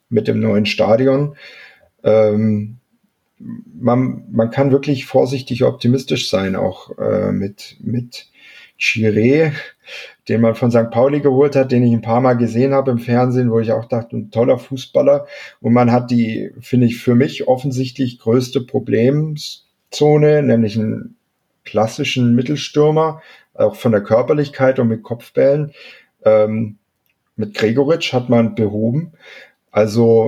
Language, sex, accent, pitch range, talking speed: German, male, German, 110-135 Hz, 135 wpm